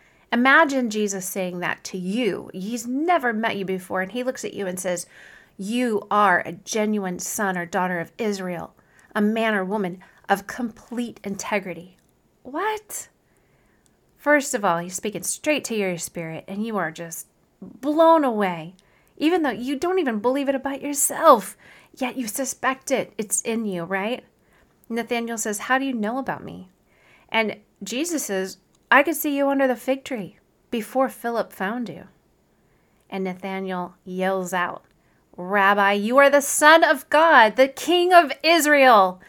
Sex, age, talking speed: female, 30-49, 160 wpm